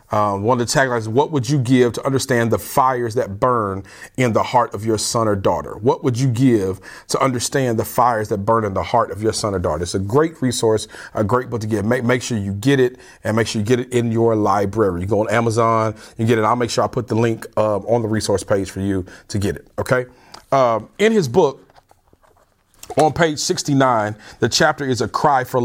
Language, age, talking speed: English, 40-59, 240 wpm